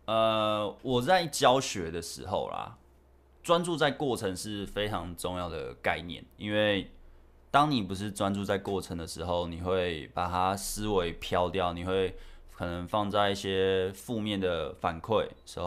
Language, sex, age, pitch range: Chinese, male, 20-39, 85-105 Hz